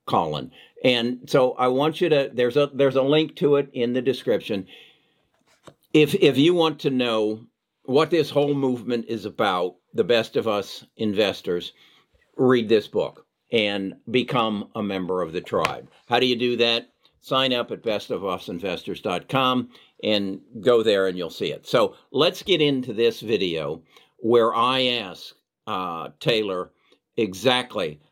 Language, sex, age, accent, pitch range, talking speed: English, male, 60-79, American, 110-140 Hz, 155 wpm